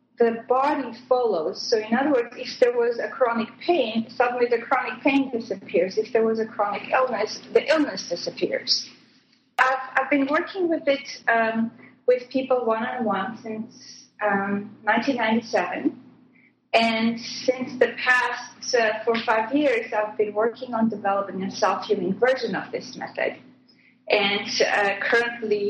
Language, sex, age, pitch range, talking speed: English, female, 30-49, 205-255 Hz, 150 wpm